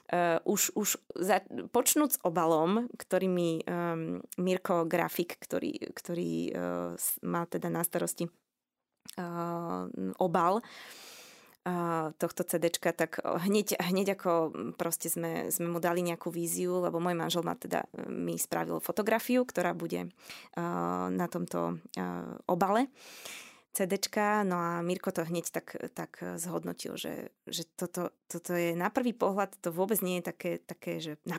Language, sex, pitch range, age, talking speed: Slovak, female, 160-185 Hz, 20-39, 145 wpm